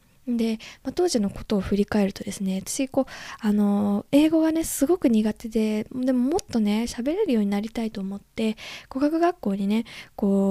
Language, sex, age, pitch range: Japanese, female, 20-39, 210-270 Hz